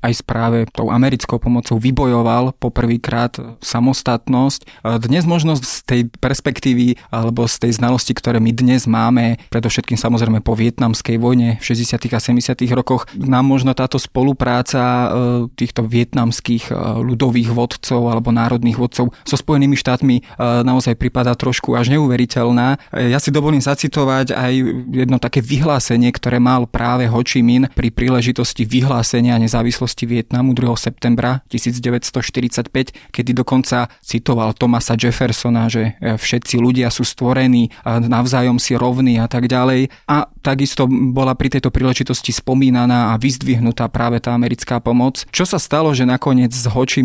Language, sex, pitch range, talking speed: Slovak, male, 120-130 Hz, 140 wpm